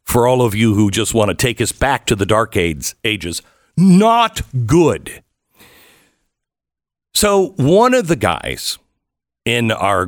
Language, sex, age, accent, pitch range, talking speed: English, male, 60-79, American, 110-185 Hz, 150 wpm